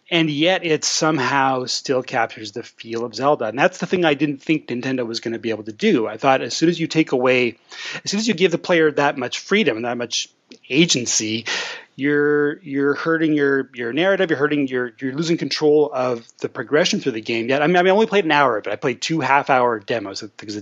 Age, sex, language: 30-49, male, English